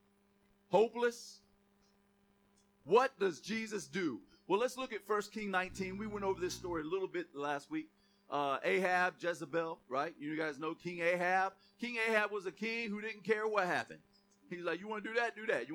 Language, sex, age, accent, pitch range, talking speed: English, male, 40-59, American, 125-205 Hz, 195 wpm